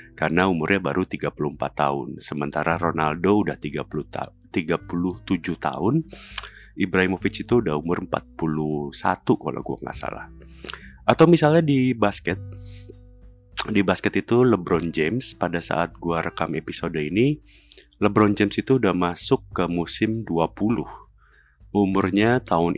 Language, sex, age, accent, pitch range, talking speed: Indonesian, male, 30-49, native, 80-105 Hz, 120 wpm